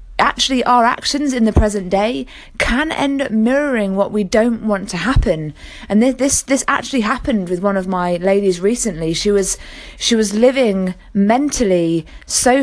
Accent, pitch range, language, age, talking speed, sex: British, 195-240 Hz, English, 20-39, 170 wpm, female